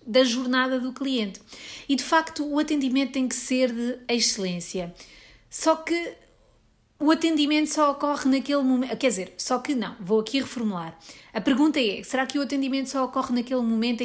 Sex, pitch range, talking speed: female, 205-265 Hz, 175 wpm